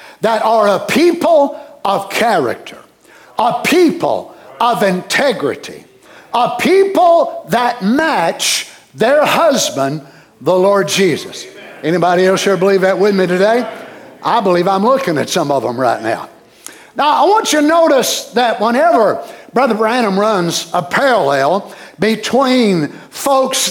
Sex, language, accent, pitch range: male, English, American, 195-280 Hz